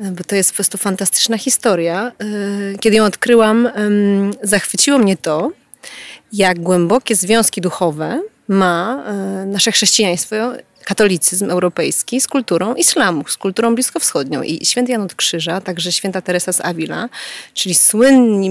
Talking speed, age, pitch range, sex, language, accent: 125 wpm, 30-49, 185-235 Hz, female, Polish, native